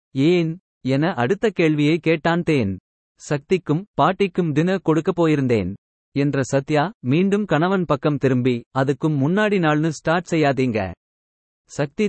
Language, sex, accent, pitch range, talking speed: Tamil, male, native, 135-170 Hz, 115 wpm